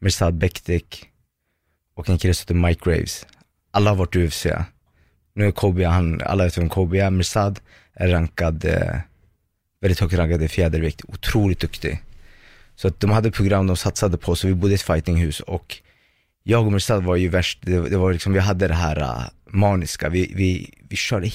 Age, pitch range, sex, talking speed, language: 20-39, 85-100 Hz, male, 175 wpm, Swedish